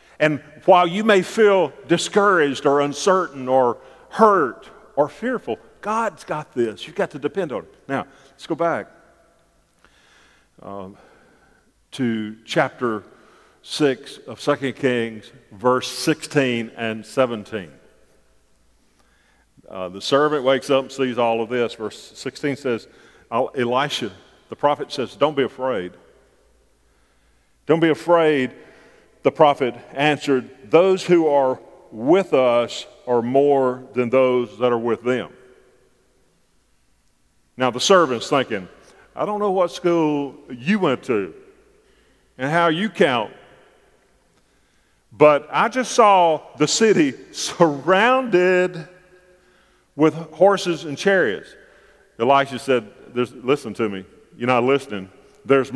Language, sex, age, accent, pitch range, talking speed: English, male, 50-69, American, 125-180 Hz, 120 wpm